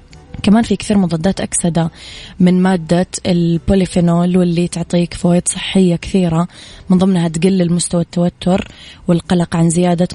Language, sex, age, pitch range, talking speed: Arabic, female, 20-39, 165-185 Hz, 125 wpm